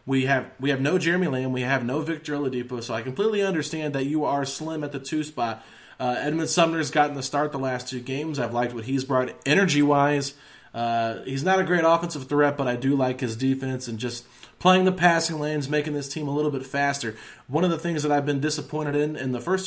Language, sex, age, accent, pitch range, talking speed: English, male, 20-39, American, 125-155 Hz, 240 wpm